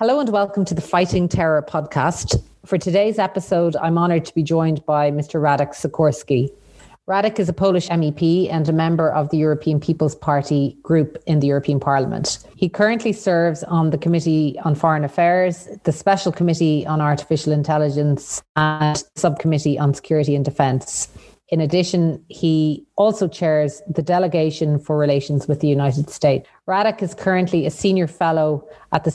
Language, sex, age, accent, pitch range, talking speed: English, female, 30-49, Irish, 150-180 Hz, 165 wpm